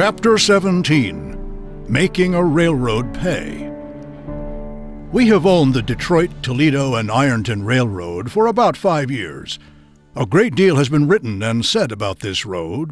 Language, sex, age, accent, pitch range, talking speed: English, male, 60-79, American, 120-170 Hz, 140 wpm